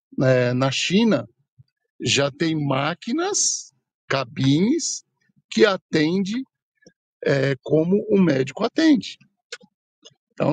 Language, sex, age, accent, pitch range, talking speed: Portuguese, male, 60-79, Brazilian, 145-195 Hz, 85 wpm